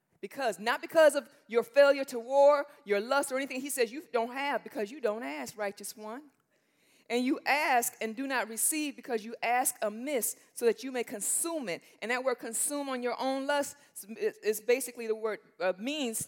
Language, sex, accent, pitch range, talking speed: English, female, American, 230-295 Hz, 205 wpm